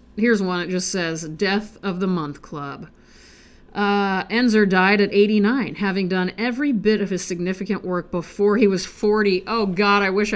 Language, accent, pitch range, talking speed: English, American, 175-230 Hz, 180 wpm